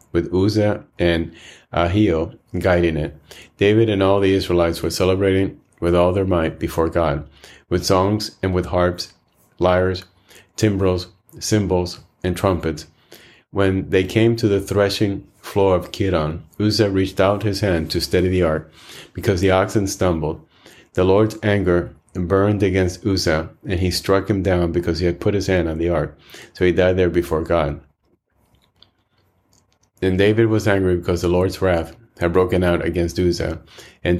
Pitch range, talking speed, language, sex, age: 85-95 Hz, 160 wpm, English, male, 30-49